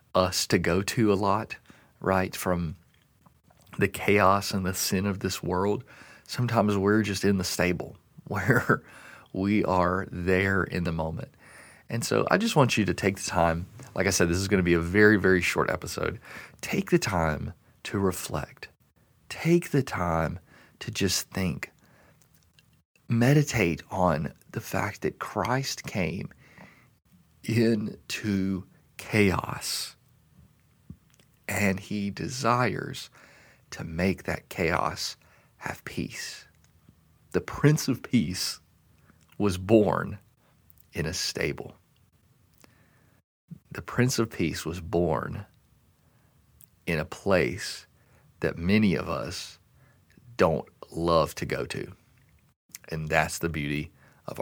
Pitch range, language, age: 85-105 Hz, English, 40-59